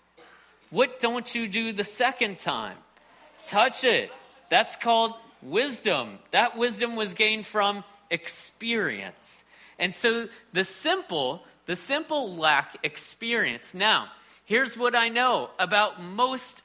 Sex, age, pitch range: male, 40-59, 200-250 Hz